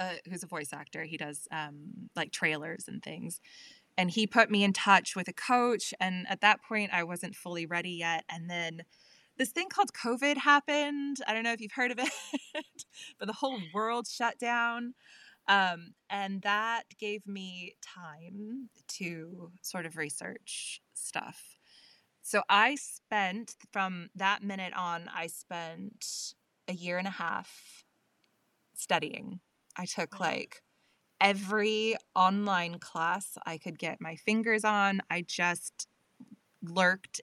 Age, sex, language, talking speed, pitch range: 20-39, female, English, 150 wpm, 170-215 Hz